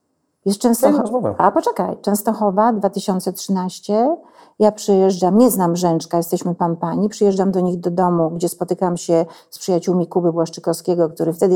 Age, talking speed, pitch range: 50-69, 140 wpm, 180-240 Hz